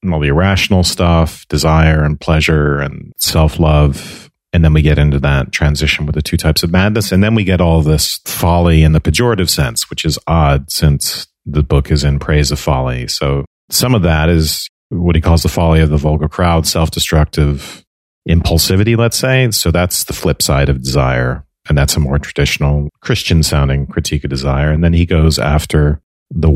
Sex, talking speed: male, 190 wpm